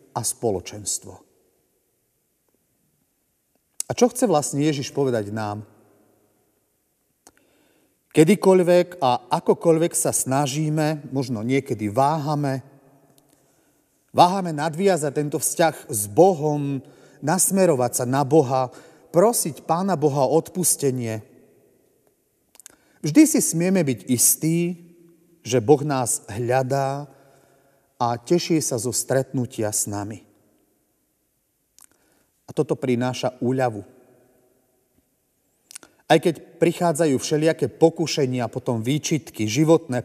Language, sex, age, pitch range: Slovak, male, 40-59, 125-165 Hz